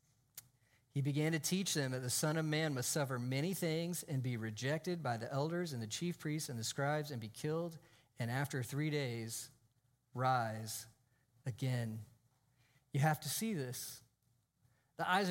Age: 40-59